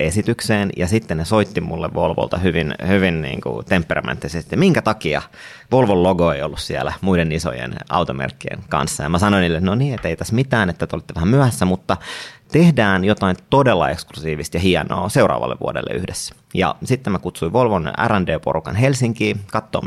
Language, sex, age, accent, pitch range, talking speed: Finnish, male, 30-49, native, 90-115 Hz, 165 wpm